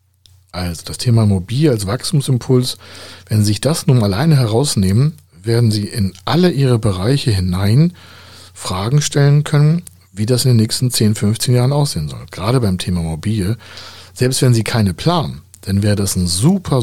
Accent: German